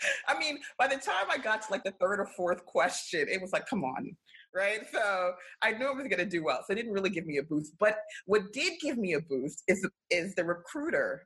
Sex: female